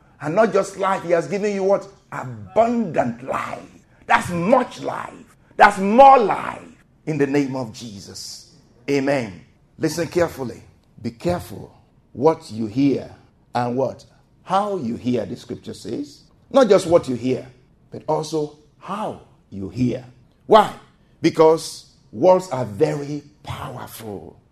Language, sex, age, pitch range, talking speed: English, male, 50-69, 130-190 Hz, 130 wpm